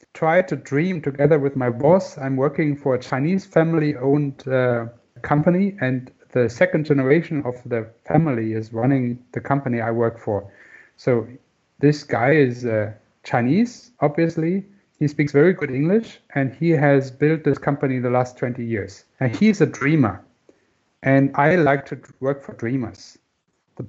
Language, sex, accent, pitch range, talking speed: English, male, German, 120-155 Hz, 160 wpm